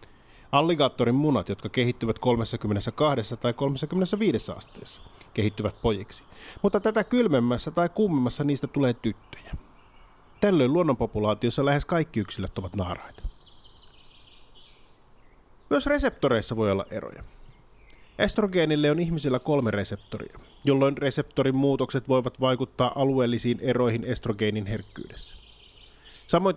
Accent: native